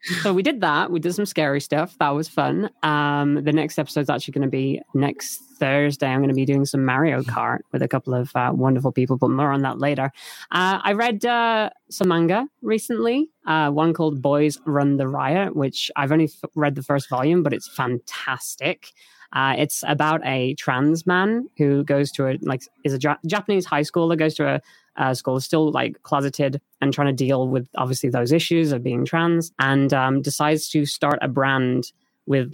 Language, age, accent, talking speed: English, 20-39, British, 205 wpm